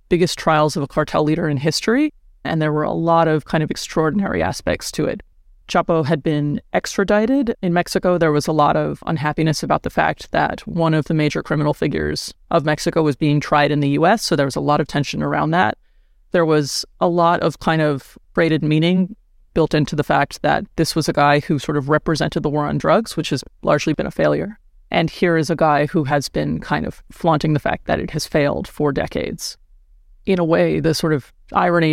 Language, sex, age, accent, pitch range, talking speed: English, female, 30-49, American, 150-170 Hz, 220 wpm